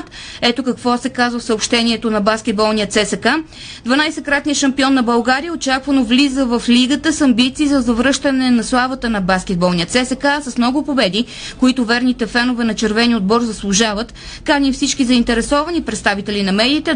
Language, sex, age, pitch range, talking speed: Bulgarian, female, 20-39, 225-275 Hz, 150 wpm